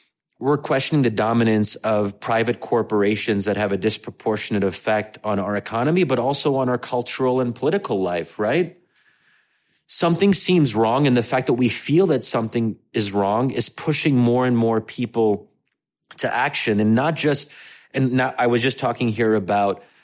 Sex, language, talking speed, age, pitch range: male, English, 170 wpm, 30-49, 110-135 Hz